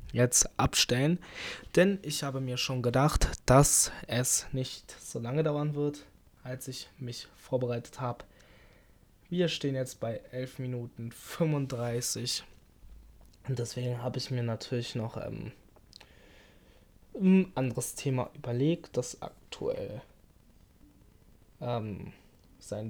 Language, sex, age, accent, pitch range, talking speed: German, male, 20-39, German, 115-140 Hz, 110 wpm